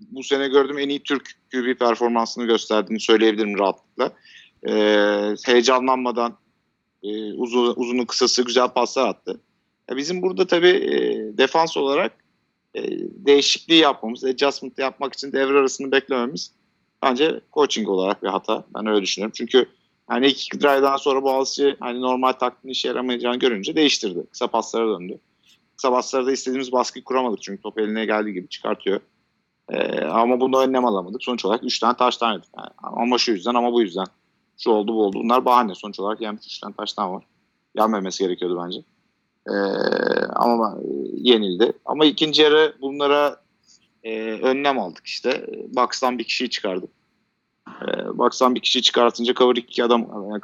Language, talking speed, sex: Turkish, 155 wpm, male